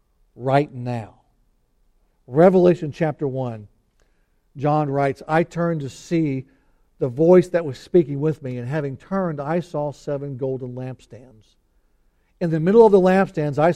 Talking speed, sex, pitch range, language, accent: 145 wpm, male, 125-165 Hz, English, American